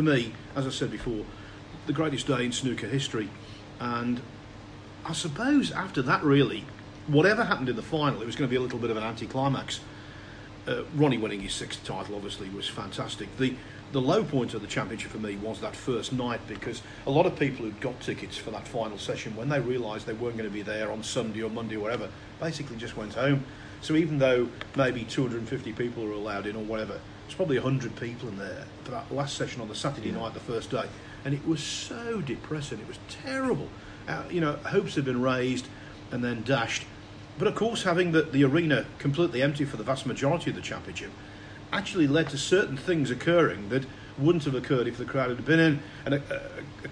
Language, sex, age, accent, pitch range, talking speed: English, male, 40-59, British, 110-140 Hz, 215 wpm